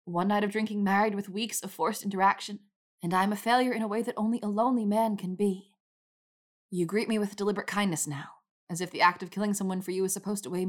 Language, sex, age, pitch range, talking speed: English, female, 20-39, 165-205 Hz, 245 wpm